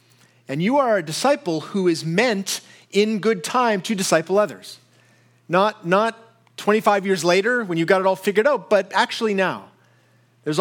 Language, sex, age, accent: English, male, 40-59, American